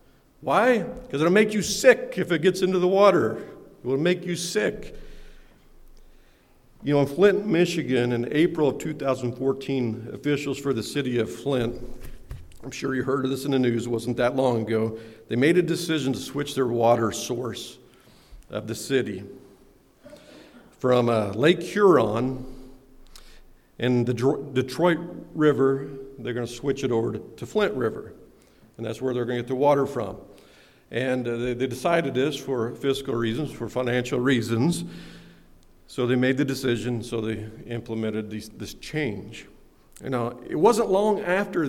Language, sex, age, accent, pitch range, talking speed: English, male, 50-69, American, 120-160 Hz, 165 wpm